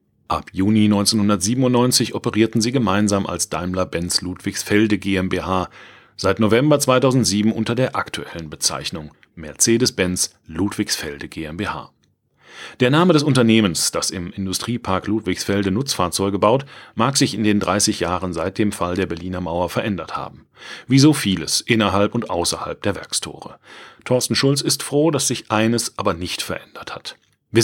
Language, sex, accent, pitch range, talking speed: German, male, German, 90-115 Hz, 135 wpm